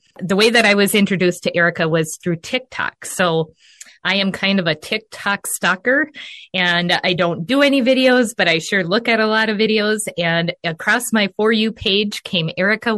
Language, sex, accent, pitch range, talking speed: English, female, American, 180-220 Hz, 195 wpm